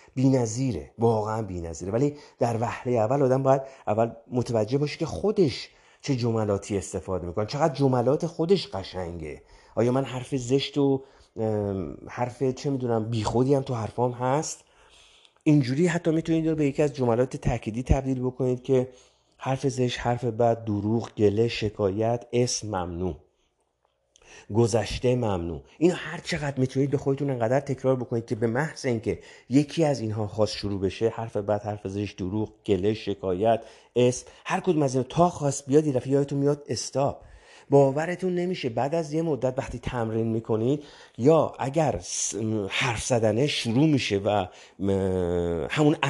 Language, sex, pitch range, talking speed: Persian, male, 110-145 Hz, 150 wpm